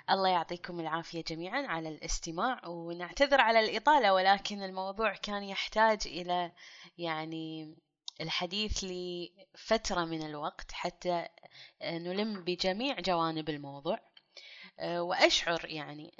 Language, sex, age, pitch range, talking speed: Arabic, female, 20-39, 170-210 Hz, 95 wpm